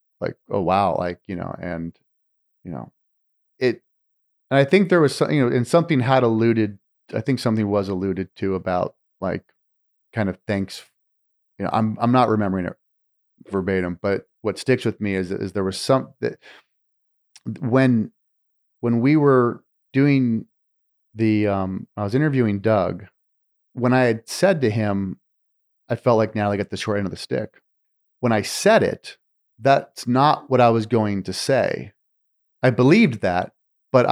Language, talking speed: English, 170 wpm